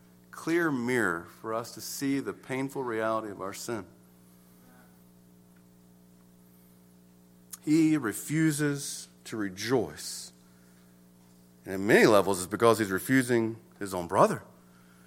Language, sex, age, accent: English, male, 40-59, American